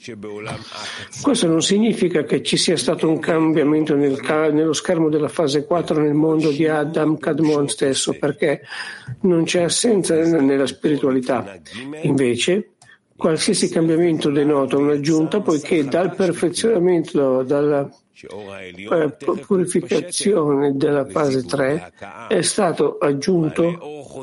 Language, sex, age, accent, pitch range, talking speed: Italian, male, 60-79, native, 140-170 Hz, 110 wpm